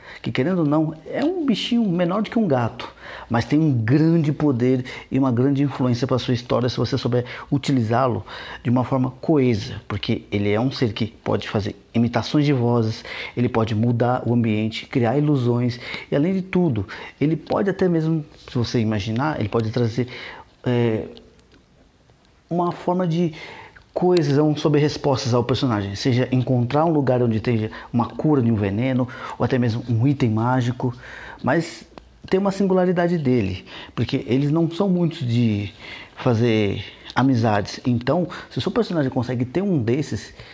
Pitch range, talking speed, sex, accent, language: 120-150 Hz, 165 wpm, male, Brazilian, Portuguese